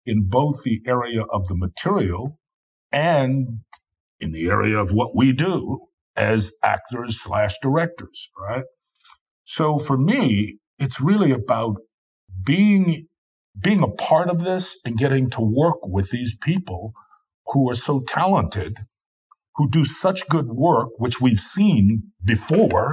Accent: American